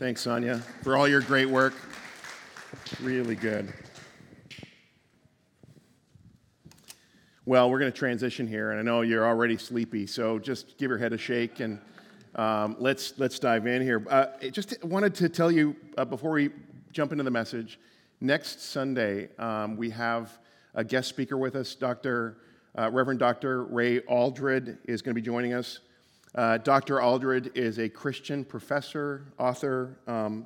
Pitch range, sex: 115-140 Hz, male